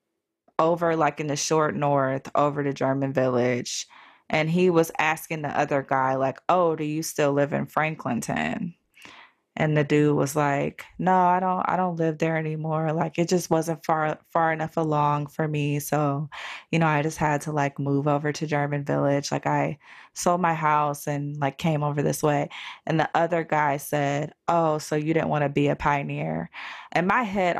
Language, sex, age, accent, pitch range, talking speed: English, female, 20-39, American, 150-220 Hz, 195 wpm